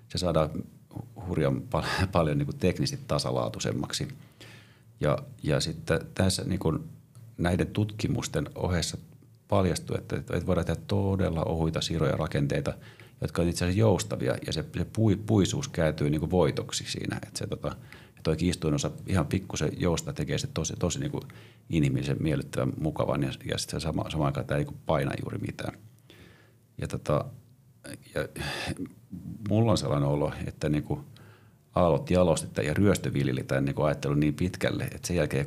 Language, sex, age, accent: Finnish, male, 40-59, native